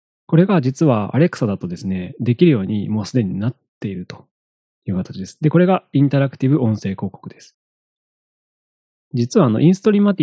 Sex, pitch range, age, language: male, 95-140 Hz, 20-39, Japanese